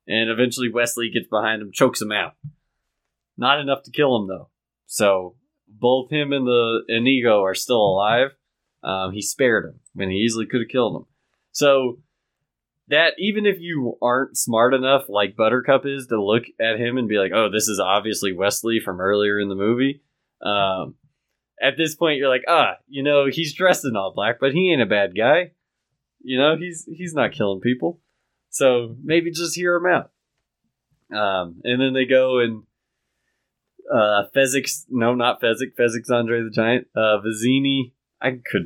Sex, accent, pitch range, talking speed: male, American, 115-140 Hz, 180 wpm